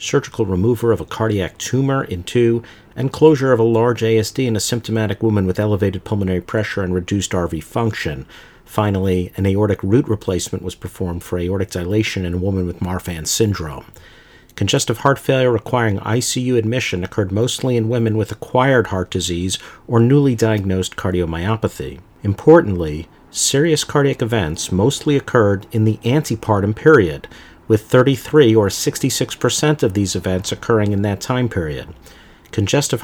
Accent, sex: American, male